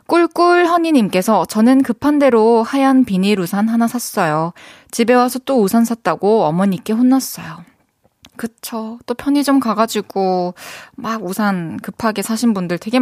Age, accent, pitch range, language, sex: 20-39, native, 185-260 Hz, Korean, female